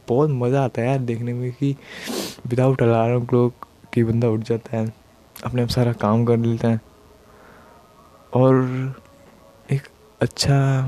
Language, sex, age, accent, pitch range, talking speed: Hindi, male, 20-39, native, 115-130 Hz, 130 wpm